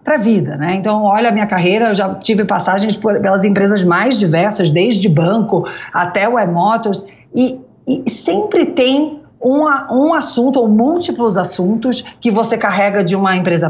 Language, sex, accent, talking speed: English, female, Brazilian, 165 wpm